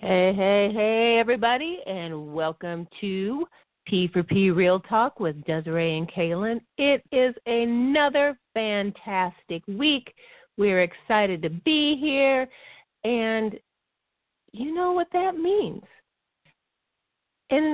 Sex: female